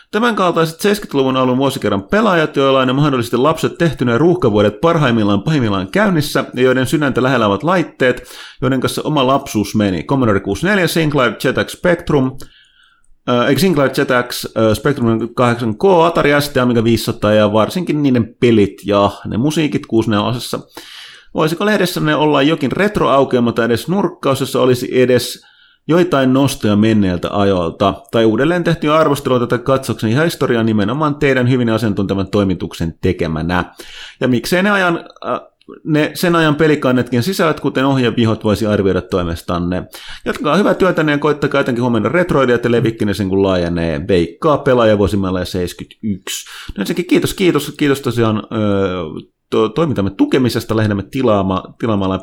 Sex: male